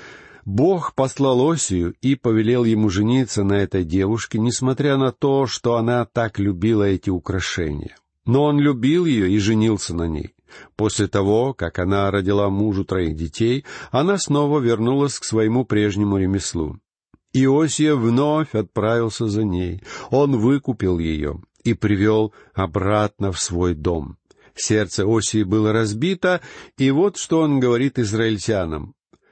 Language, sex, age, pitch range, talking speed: Russian, male, 50-69, 100-140 Hz, 135 wpm